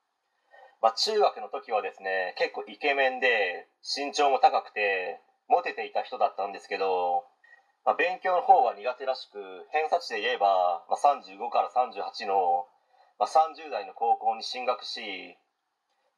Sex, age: male, 30-49